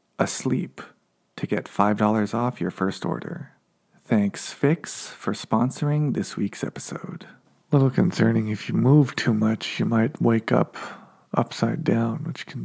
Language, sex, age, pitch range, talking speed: English, male, 40-59, 100-160 Hz, 145 wpm